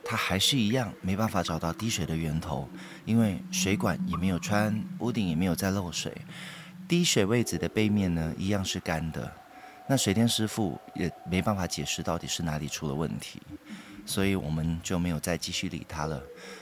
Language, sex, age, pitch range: Chinese, male, 30-49, 85-115 Hz